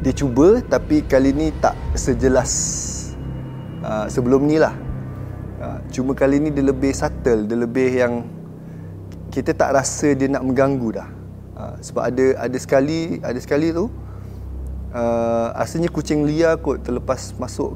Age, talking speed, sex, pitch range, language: 20-39, 145 wpm, male, 105-145 Hz, English